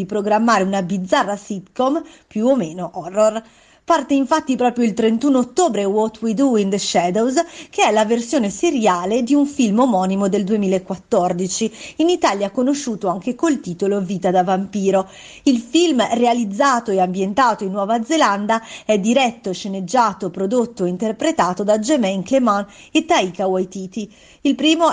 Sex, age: female, 30-49